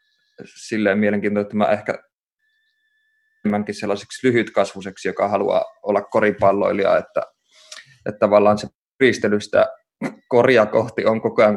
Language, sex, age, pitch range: Finnish, male, 20-39, 105-125 Hz